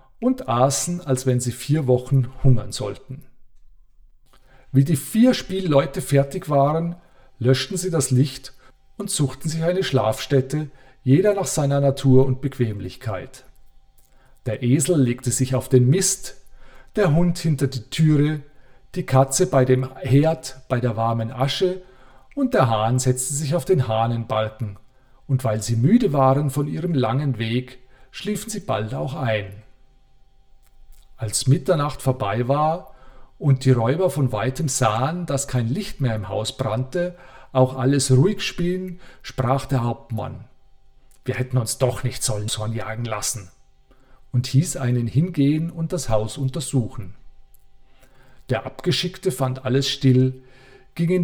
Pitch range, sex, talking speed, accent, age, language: 130-145 Hz, male, 140 wpm, German, 40-59, German